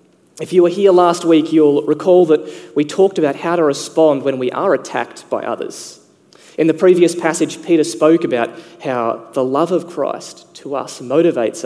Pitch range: 135-175 Hz